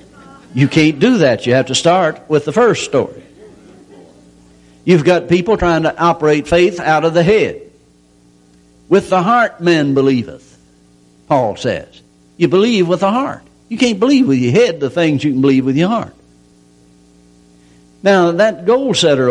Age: 60-79